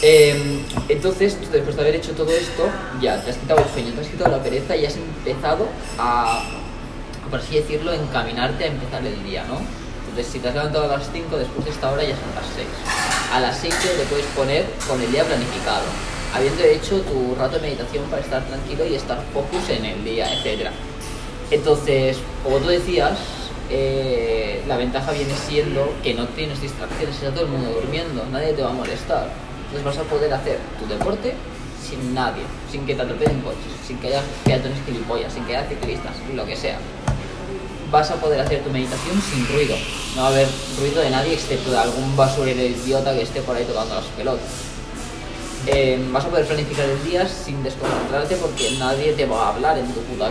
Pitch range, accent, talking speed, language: 130-150 Hz, Spanish, 200 wpm, Spanish